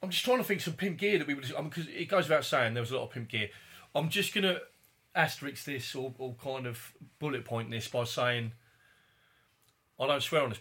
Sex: male